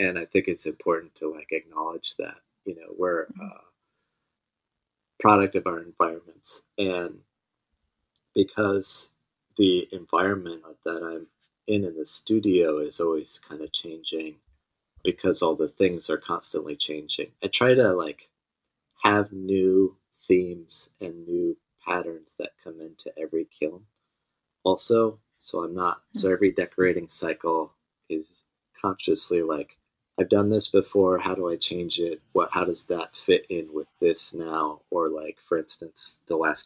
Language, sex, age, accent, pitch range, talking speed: English, male, 30-49, American, 80-100 Hz, 145 wpm